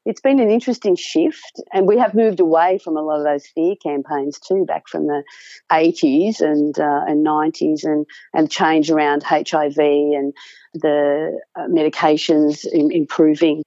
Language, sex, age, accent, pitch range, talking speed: English, female, 40-59, Australian, 150-205 Hz, 155 wpm